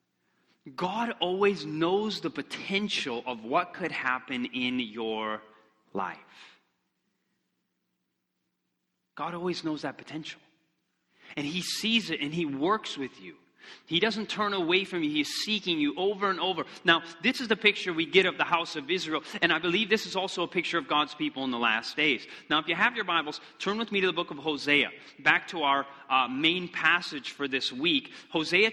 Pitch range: 155-205 Hz